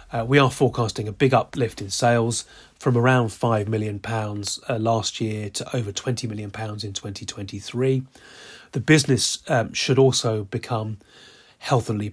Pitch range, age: 110-130 Hz, 30-49